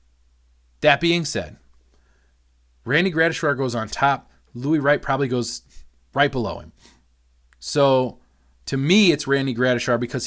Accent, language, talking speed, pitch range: American, English, 130 wpm, 100-140 Hz